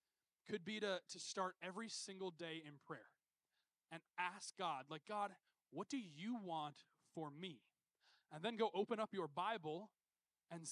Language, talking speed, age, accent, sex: English, 160 wpm, 20-39, American, male